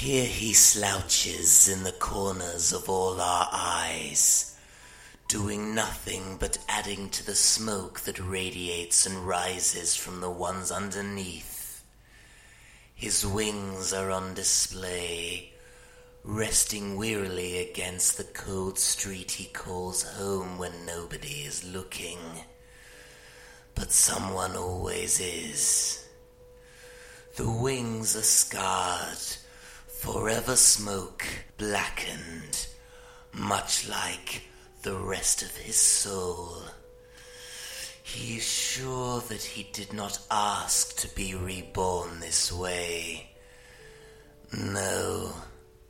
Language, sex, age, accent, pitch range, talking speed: English, male, 30-49, British, 90-110 Hz, 100 wpm